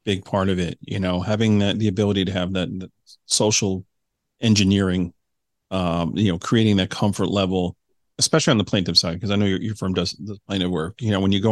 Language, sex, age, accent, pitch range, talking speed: English, male, 40-59, American, 95-110 Hz, 225 wpm